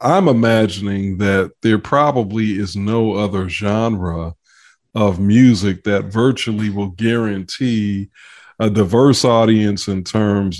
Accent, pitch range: American, 100-125 Hz